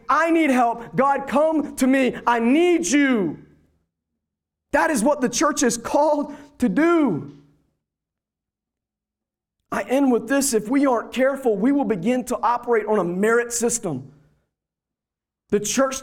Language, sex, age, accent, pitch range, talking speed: English, male, 30-49, American, 200-260 Hz, 140 wpm